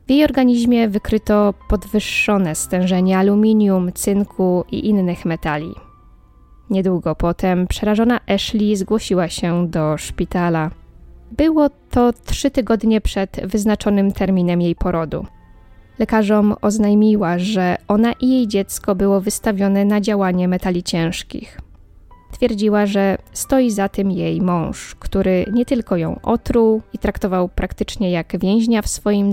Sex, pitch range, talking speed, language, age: female, 180-220 Hz, 125 wpm, Polish, 20-39